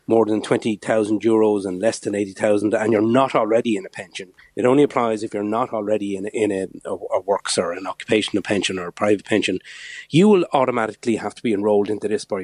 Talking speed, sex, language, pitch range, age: 220 wpm, male, English, 105-135 Hz, 30-49